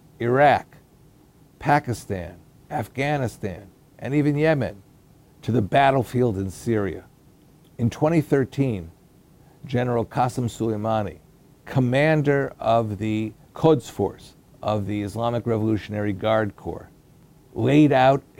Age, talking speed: 50-69, 95 wpm